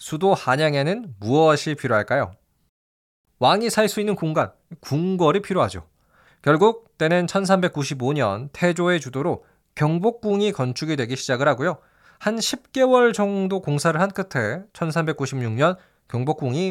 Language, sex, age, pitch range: Korean, male, 20-39, 130-195 Hz